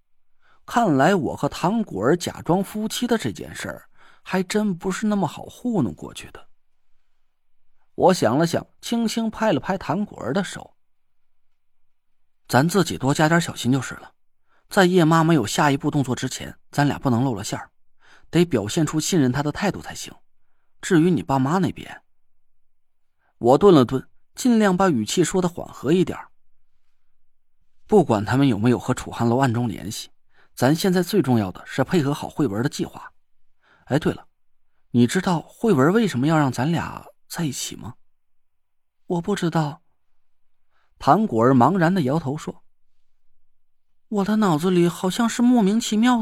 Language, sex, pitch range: Chinese, male, 125-210 Hz